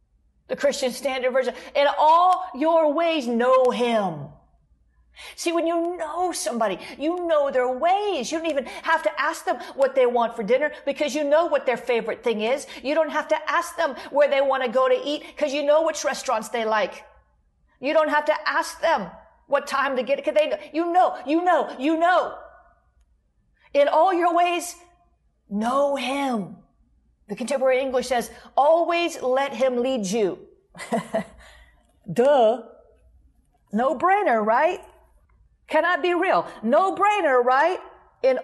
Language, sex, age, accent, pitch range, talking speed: English, female, 40-59, American, 260-330 Hz, 165 wpm